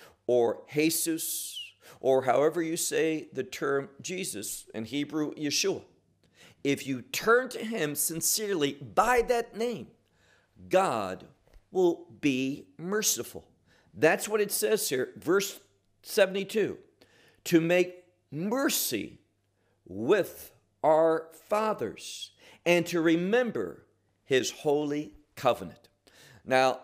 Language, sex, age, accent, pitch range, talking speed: English, male, 50-69, American, 140-195 Hz, 100 wpm